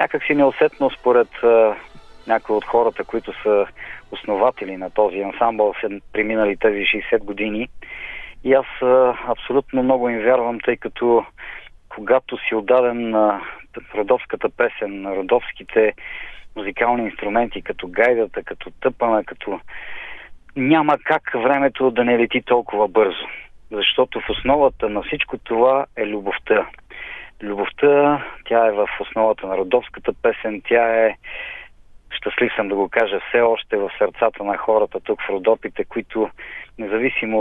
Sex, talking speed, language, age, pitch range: male, 135 wpm, Bulgarian, 40-59, 105-135 Hz